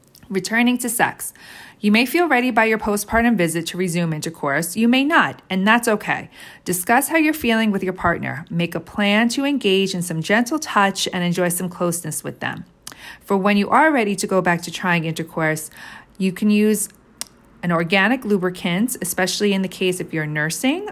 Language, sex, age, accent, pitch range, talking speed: English, female, 40-59, American, 175-225 Hz, 190 wpm